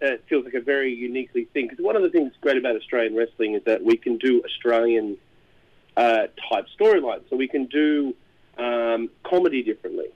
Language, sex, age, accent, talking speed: English, male, 30-49, Australian, 195 wpm